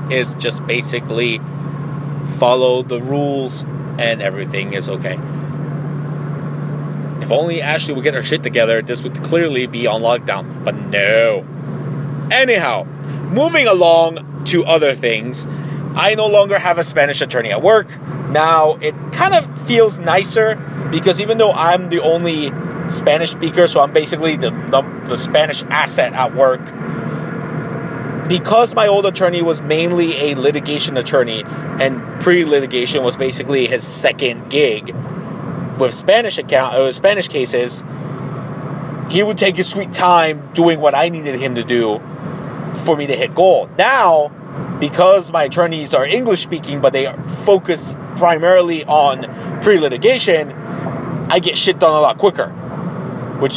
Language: English